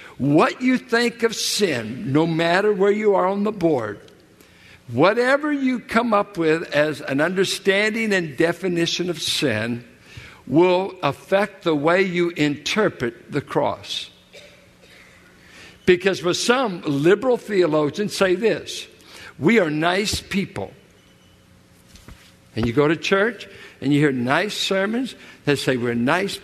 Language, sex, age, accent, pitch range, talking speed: English, male, 60-79, American, 145-210 Hz, 130 wpm